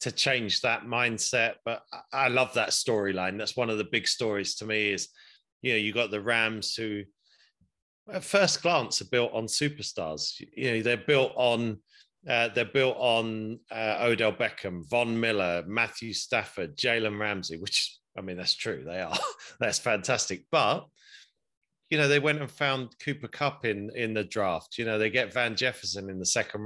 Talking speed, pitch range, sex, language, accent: 180 wpm, 105-135 Hz, male, English, British